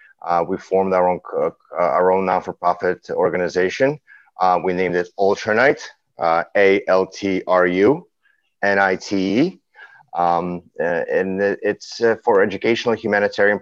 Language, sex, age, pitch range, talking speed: English, male, 30-49, 90-110 Hz, 105 wpm